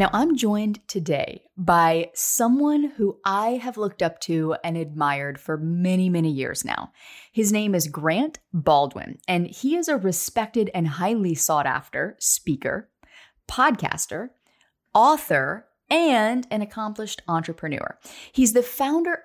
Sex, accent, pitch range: female, American, 165-235 Hz